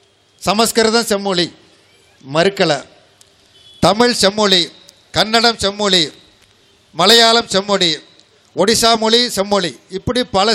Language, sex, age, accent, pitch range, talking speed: Tamil, male, 50-69, native, 185-230 Hz, 80 wpm